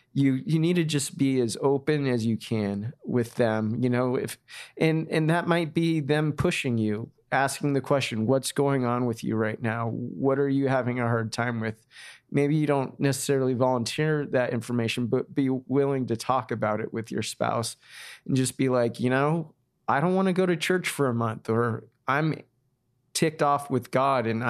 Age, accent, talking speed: 30-49, American, 200 wpm